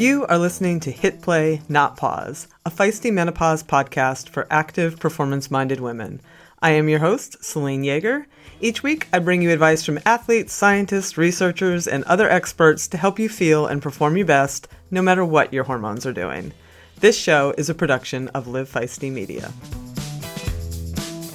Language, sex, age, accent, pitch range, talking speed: English, female, 30-49, American, 145-200 Hz, 165 wpm